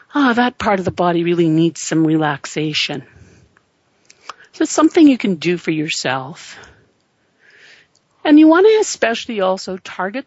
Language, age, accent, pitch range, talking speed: English, 50-69, American, 165-215 Hz, 150 wpm